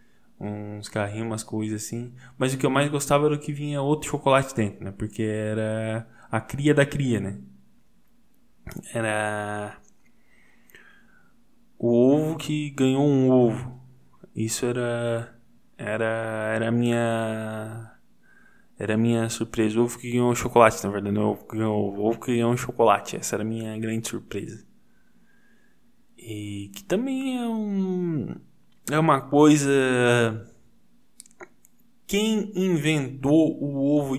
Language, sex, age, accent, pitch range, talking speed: Portuguese, male, 10-29, Brazilian, 110-150 Hz, 130 wpm